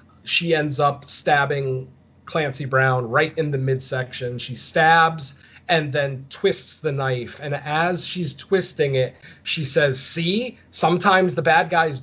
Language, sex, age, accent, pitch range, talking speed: English, male, 40-59, American, 135-165 Hz, 145 wpm